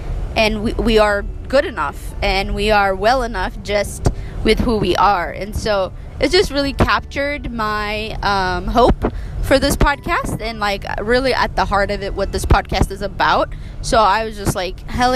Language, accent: English, American